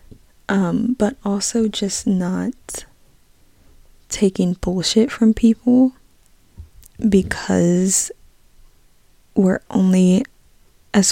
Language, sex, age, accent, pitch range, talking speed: English, female, 20-39, American, 175-215 Hz, 70 wpm